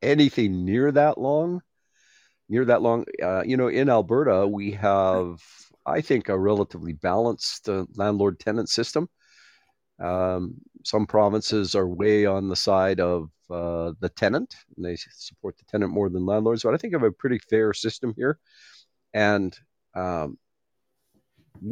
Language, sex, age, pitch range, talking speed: English, male, 50-69, 95-115 Hz, 145 wpm